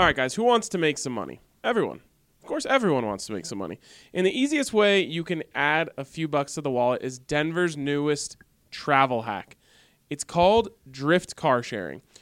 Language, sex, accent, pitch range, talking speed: English, male, American, 135-185 Hz, 200 wpm